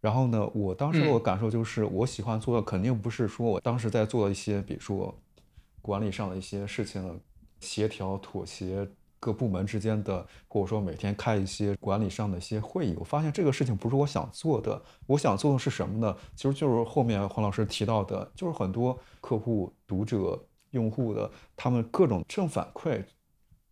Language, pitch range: Chinese, 100-125 Hz